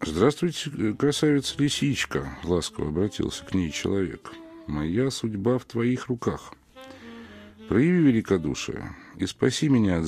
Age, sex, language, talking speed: 50-69, male, Russian, 120 wpm